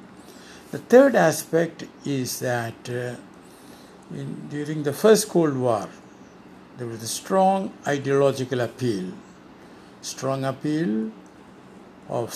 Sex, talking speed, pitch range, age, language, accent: male, 100 wpm, 120-155 Hz, 60-79, English, Indian